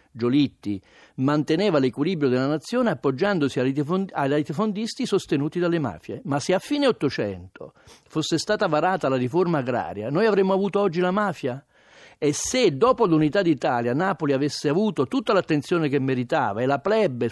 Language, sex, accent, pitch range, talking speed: Italian, male, native, 130-185 Hz, 150 wpm